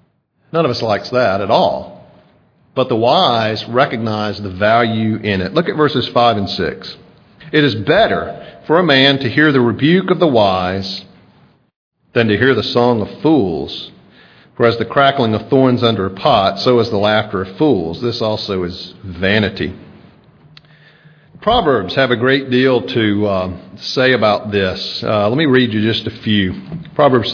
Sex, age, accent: male, 50-69, American